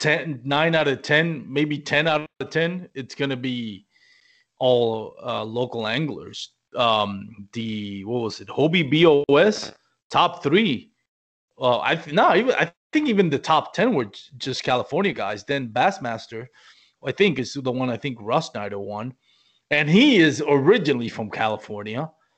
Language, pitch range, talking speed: English, 120-160 Hz, 160 wpm